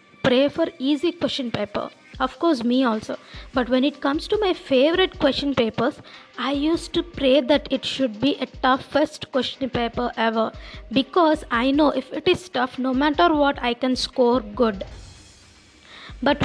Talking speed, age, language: 170 wpm, 20-39, English